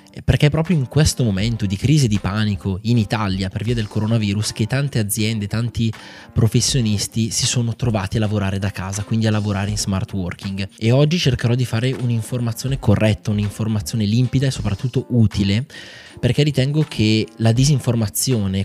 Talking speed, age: 165 wpm, 20-39